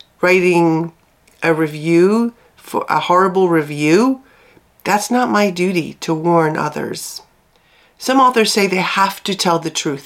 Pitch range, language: 155-190 Hz, English